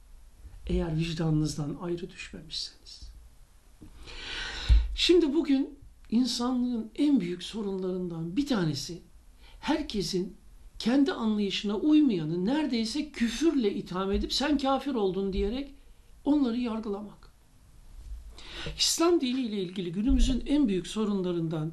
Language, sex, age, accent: Turkish, male, 60-79, native